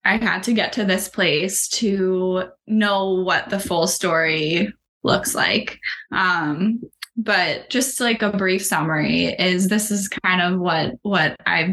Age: 10-29